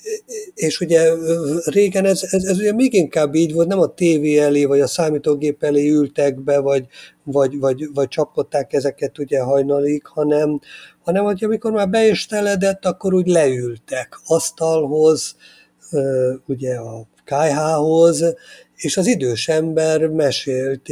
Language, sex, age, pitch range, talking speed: Hungarian, male, 50-69, 135-165 Hz, 135 wpm